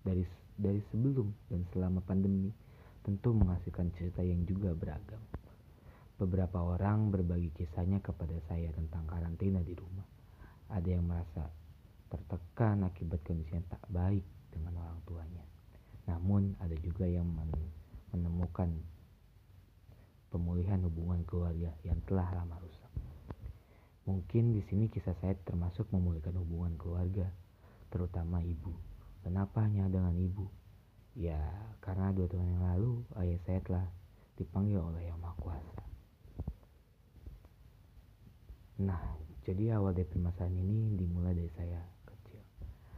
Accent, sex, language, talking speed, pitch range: native, male, Indonesian, 120 wpm, 85-100 Hz